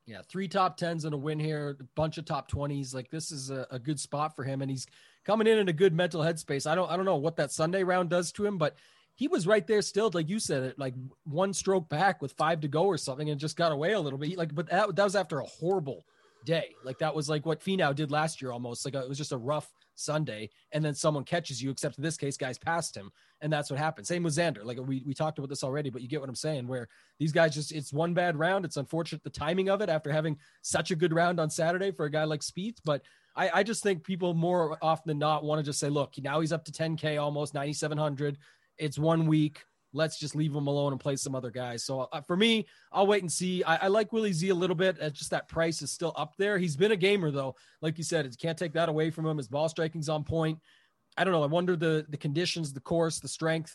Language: English